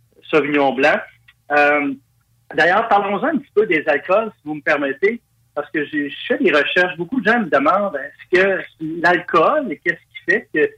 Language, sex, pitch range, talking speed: French, male, 140-200 Hz, 175 wpm